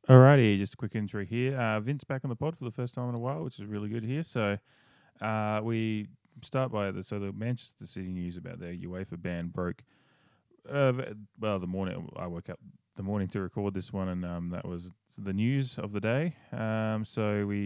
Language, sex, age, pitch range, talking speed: English, male, 20-39, 90-110 Hz, 220 wpm